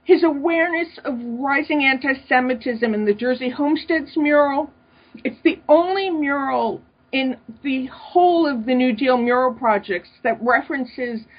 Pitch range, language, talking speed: 215-270 Hz, English, 130 wpm